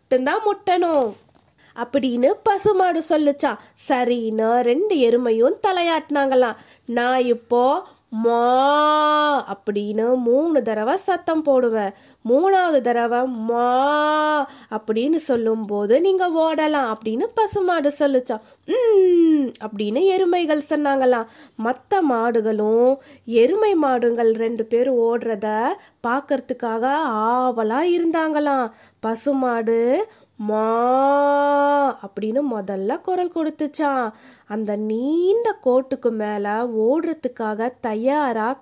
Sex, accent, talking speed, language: female, native, 70 wpm, Tamil